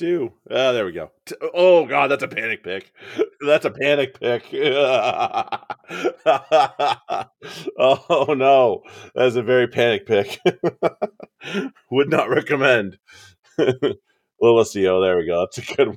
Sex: male